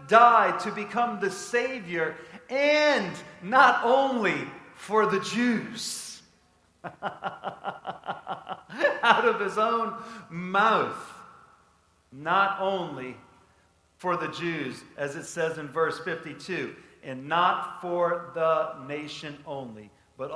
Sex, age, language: male, 40-59, English